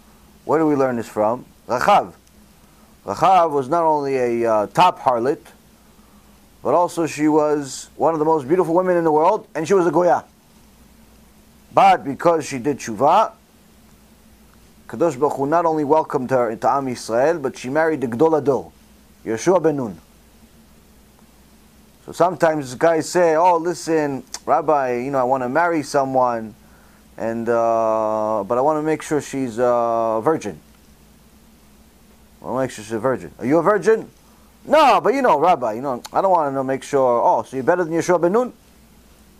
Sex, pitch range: male, 120-165 Hz